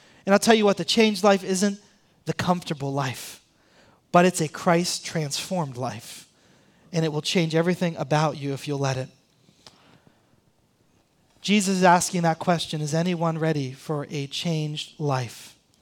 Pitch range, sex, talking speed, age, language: 165-220 Hz, male, 150 wpm, 30-49, English